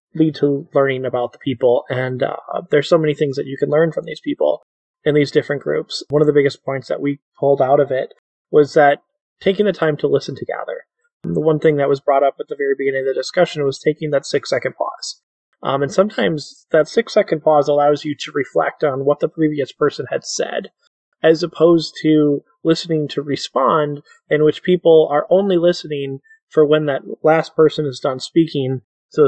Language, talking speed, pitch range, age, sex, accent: English, 205 wpm, 140-165 Hz, 20-39, male, American